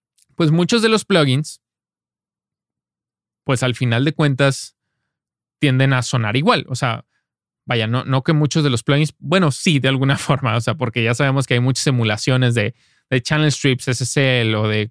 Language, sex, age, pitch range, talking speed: Spanish, male, 20-39, 125-165 Hz, 180 wpm